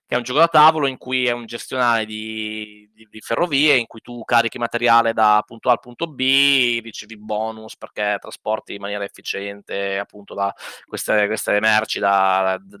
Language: Italian